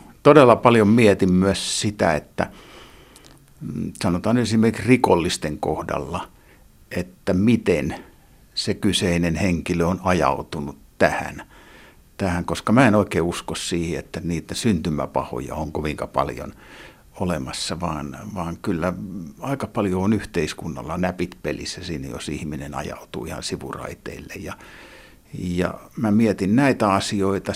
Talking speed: 115 wpm